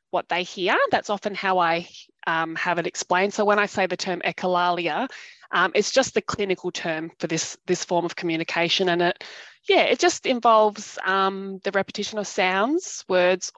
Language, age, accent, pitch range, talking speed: English, 20-39, Australian, 175-205 Hz, 185 wpm